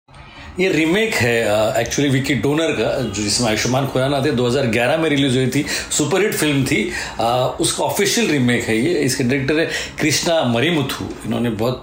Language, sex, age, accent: Hindi, male, 40-59, native